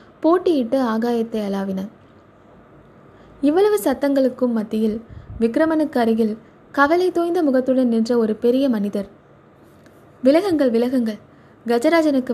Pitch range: 220-285 Hz